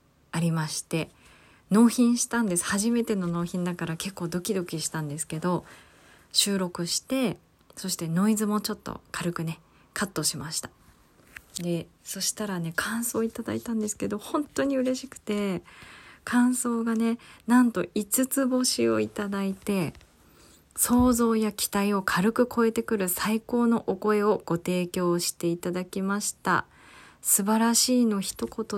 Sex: female